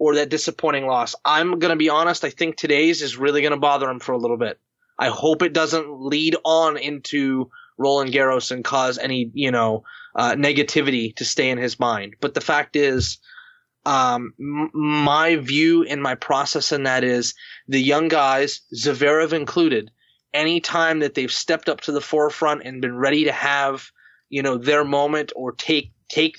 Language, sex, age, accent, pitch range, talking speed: English, male, 20-39, American, 130-150 Hz, 180 wpm